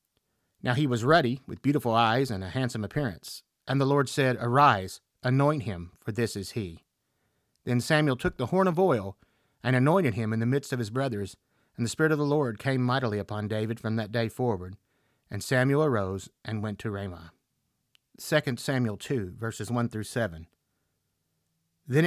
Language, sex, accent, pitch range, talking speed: English, male, American, 105-135 Hz, 180 wpm